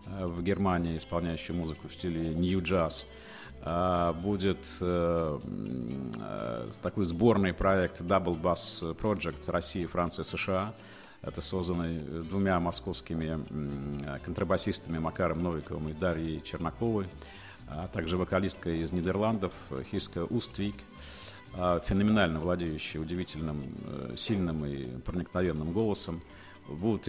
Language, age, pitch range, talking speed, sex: Russian, 50-69, 80-95 Hz, 95 wpm, male